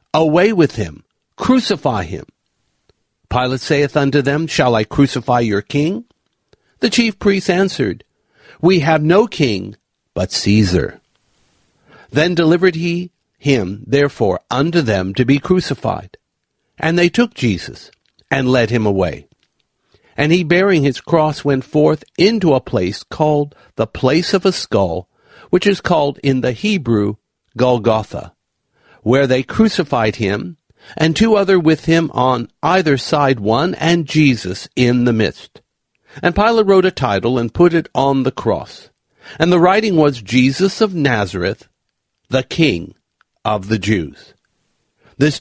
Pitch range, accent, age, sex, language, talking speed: 120-175 Hz, American, 60-79, male, English, 140 wpm